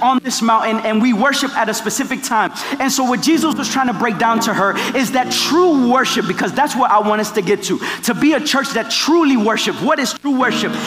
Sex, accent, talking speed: male, American, 250 wpm